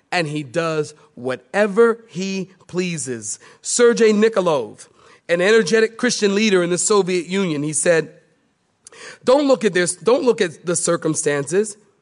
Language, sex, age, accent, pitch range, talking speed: English, male, 40-59, American, 165-220 Hz, 135 wpm